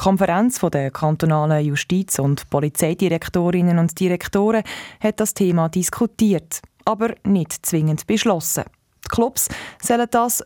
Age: 20-39